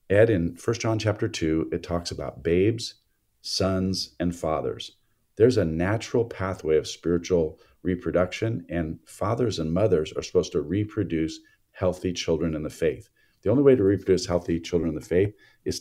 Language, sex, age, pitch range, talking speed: English, male, 50-69, 85-100 Hz, 165 wpm